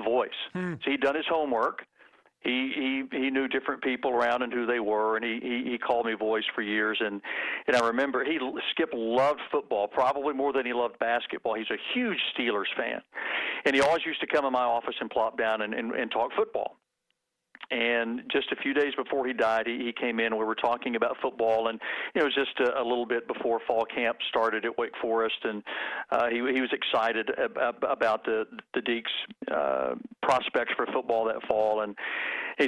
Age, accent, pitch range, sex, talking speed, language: 50-69, American, 110-135 Hz, male, 210 wpm, English